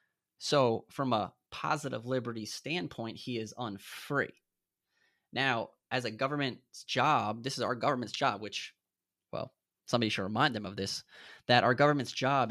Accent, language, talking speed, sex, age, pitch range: American, English, 150 wpm, male, 20-39, 110-130 Hz